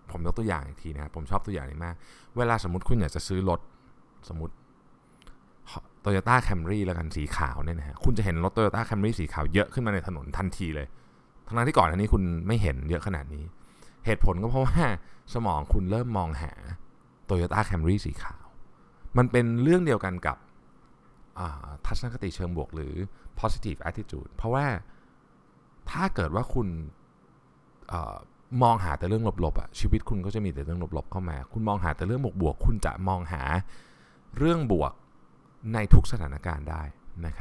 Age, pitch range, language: 20-39, 75-110 Hz, Thai